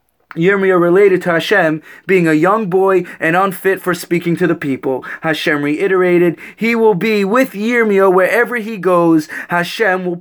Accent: American